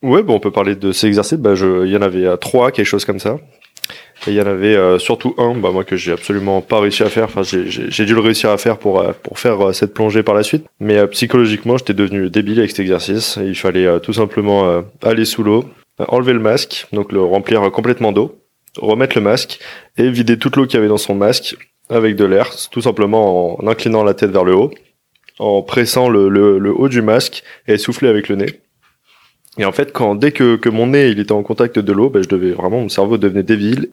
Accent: French